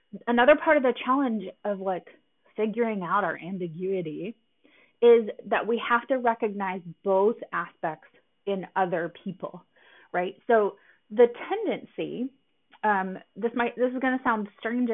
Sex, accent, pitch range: female, American, 190-255 Hz